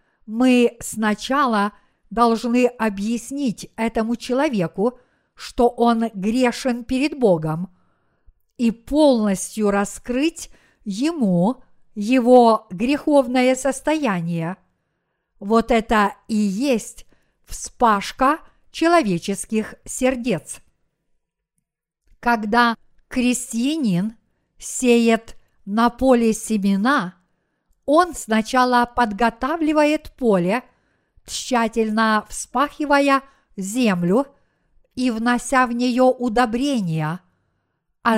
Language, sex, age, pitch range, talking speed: Russian, female, 50-69, 210-260 Hz, 70 wpm